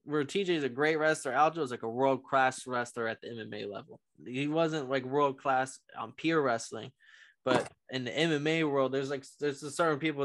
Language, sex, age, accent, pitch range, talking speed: English, male, 20-39, American, 120-150 Hz, 200 wpm